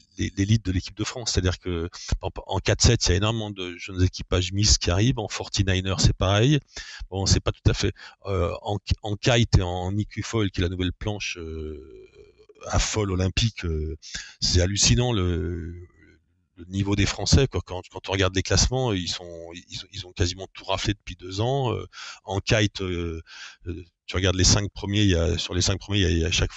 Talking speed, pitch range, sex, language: 215 wpm, 90-105 Hz, male, French